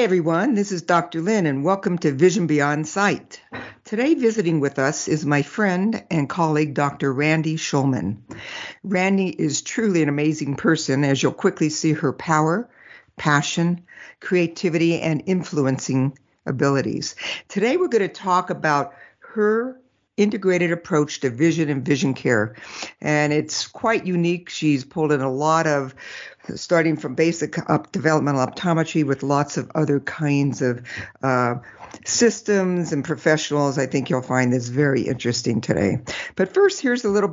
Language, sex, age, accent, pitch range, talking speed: English, female, 60-79, American, 145-180 Hz, 150 wpm